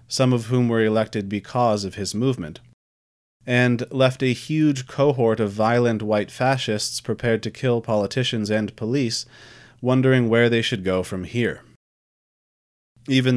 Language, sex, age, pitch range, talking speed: English, male, 30-49, 105-125 Hz, 145 wpm